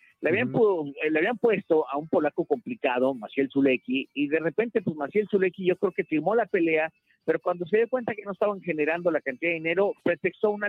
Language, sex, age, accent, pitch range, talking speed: Spanish, male, 50-69, Mexican, 150-225 Hz, 220 wpm